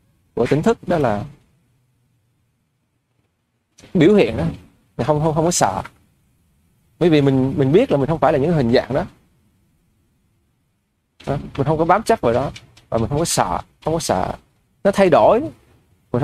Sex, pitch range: male, 115-175 Hz